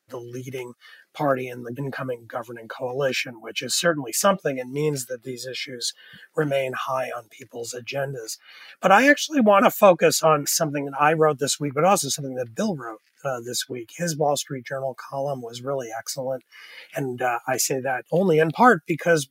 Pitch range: 130-165 Hz